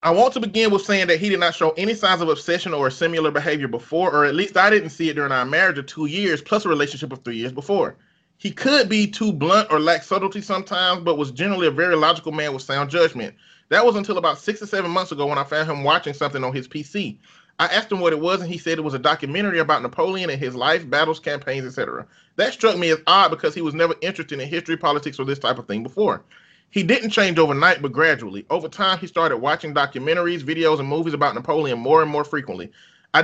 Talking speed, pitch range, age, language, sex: 250 wpm, 145-185 Hz, 30-49, English, male